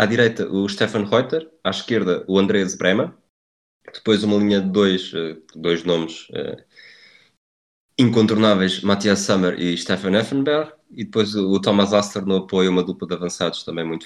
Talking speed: 160 wpm